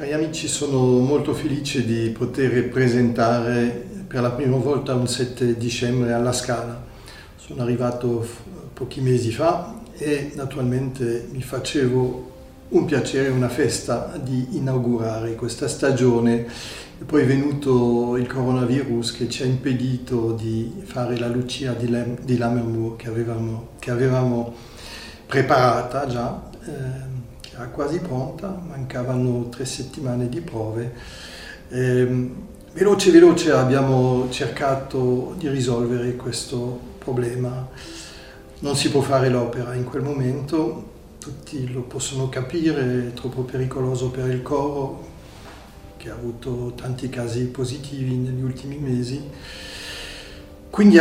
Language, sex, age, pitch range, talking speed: Italian, male, 40-59, 120-135 Hz, 120 wpm